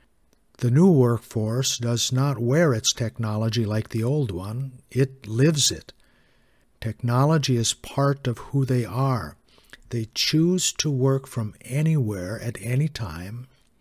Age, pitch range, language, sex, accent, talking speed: 60-79, 115-135 Hz, English, male, American, 135 wpm